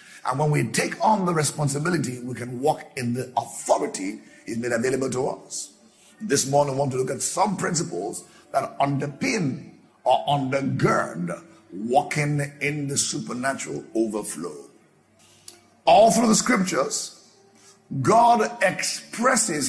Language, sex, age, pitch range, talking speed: English, male, 50-69, 140-190 Hz, 130 wpm